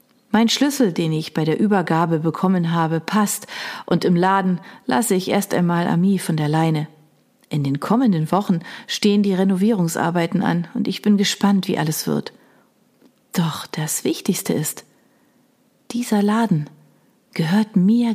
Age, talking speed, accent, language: 40-59, 145 wpm, German, German